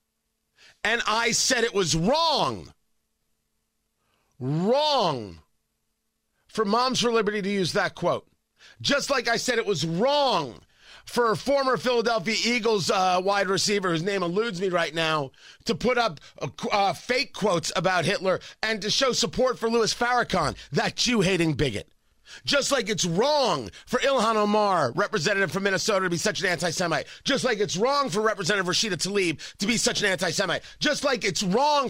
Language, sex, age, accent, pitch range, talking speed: English, male, 40-59, American, 185-245 Hz, 165 wpm